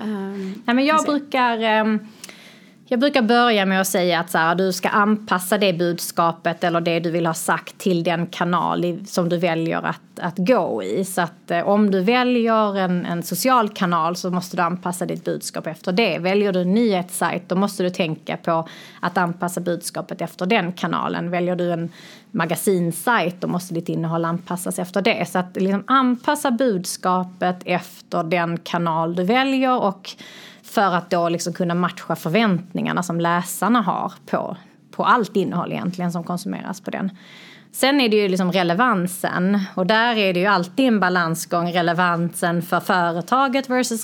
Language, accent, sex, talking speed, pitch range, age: Swedish, native, female, 165 wpm, 175-220 Hz, 30-49